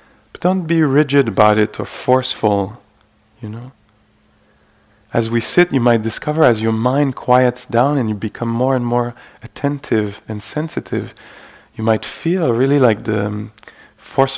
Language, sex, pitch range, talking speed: English, male, 110-135 Hz, 155 wpm